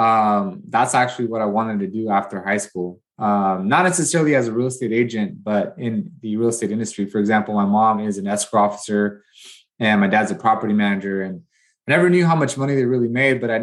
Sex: male